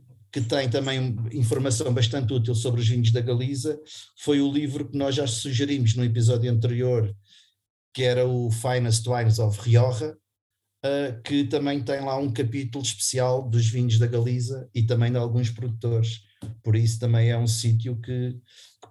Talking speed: 165 wpm